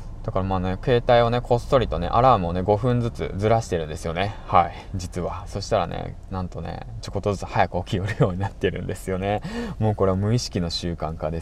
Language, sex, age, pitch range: Japanese, male, 20-39, 90-115 Hz